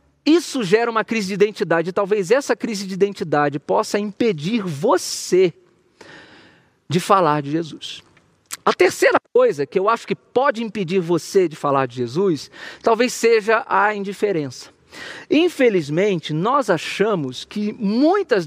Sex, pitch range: male, 180-250 Hz